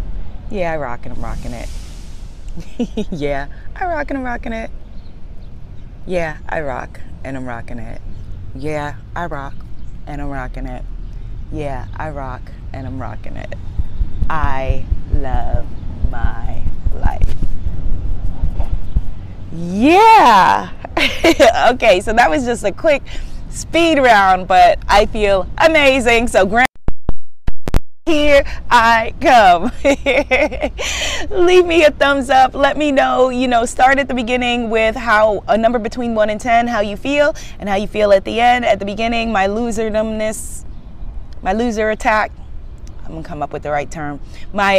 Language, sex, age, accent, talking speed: English, female, 20-39, American, 145 wpm